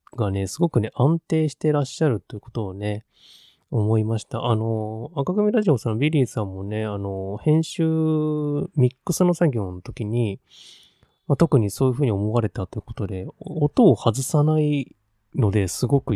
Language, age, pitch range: Japanese, 20-39, 100-140 Hz